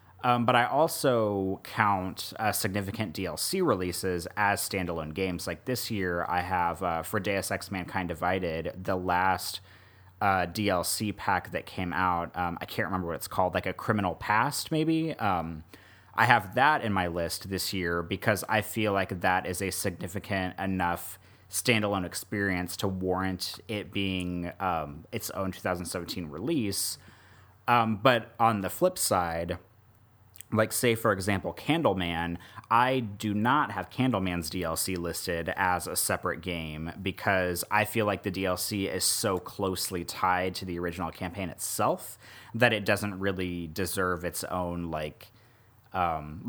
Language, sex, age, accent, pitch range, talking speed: English, male, 30-49, American, 90-110 Hz, 150 wpm